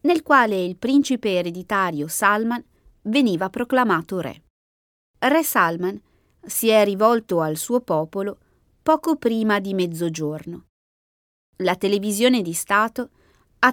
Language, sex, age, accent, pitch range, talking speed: Italian, female, 20-39, native, 165-240 Hz, 115 wpm